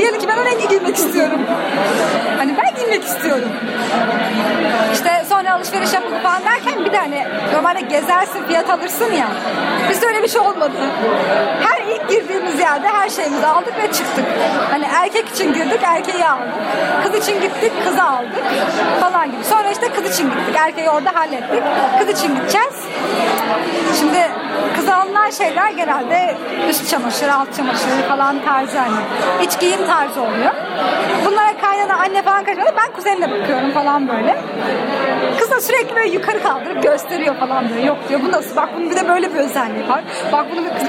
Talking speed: 165 wpm